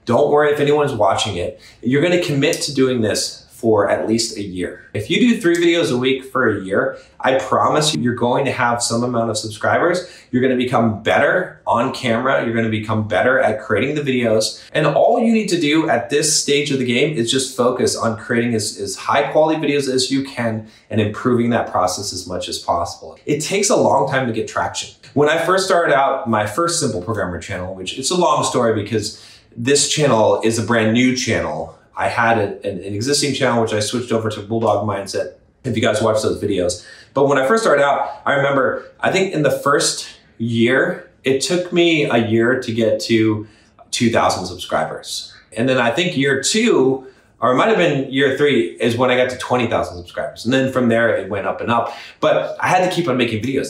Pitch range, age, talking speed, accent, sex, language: 110-140 Hz, 30-49, 220 wpm, American, male, English